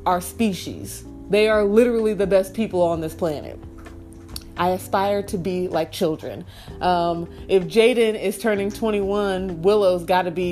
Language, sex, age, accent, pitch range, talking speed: English, female, 20-39, American, 185-220 Hz, 155 wpm